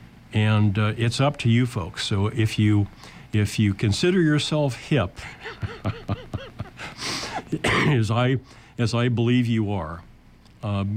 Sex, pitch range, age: male, 110-125 Hz, 50-69